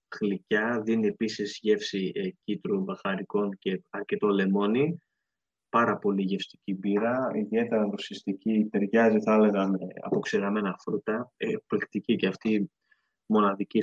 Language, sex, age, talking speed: Greek, male, 20-39, 115 wpm